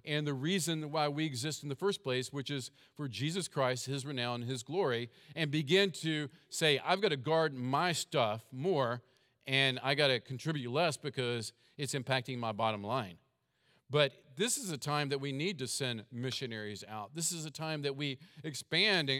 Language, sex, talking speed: English, male, 190 wpm